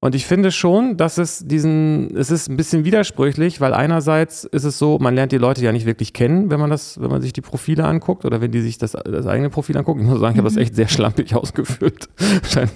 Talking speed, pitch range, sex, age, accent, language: 255 wpm, 110-145 Hz, male, 30-49, German, German